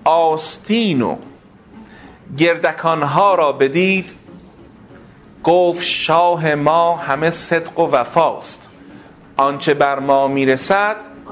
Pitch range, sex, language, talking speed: 135-185 Hz, male, Persian, 80 wpm